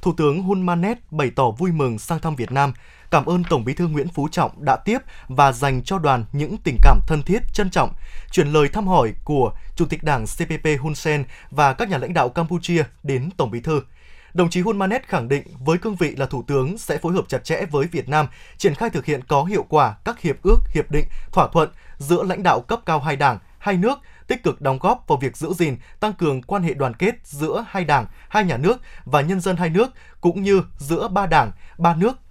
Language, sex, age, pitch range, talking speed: Vietnamese, male, 20-39, 140-185 Hz, 240 wpm